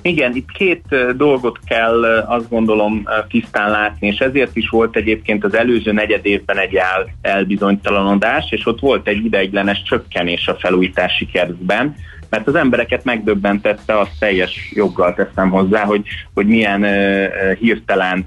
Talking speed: 140 wpm